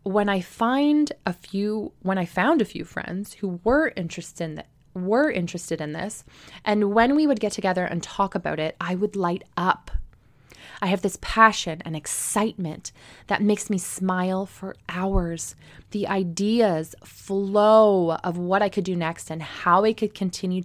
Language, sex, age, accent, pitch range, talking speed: English, female, 20-39, American, 170-210 Hz, 175 wpm